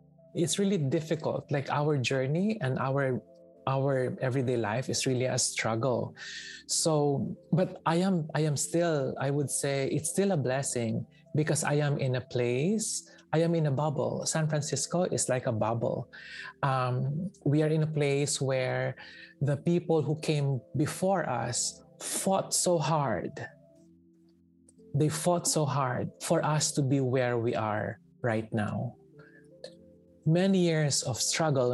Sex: male